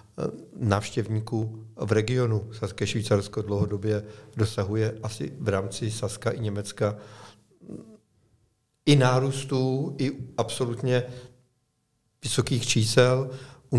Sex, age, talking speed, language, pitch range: male, 50-69, 85 wpm, Czech, 110-125 Hz